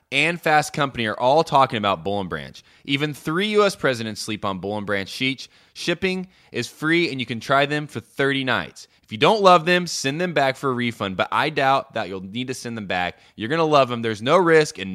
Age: 20-39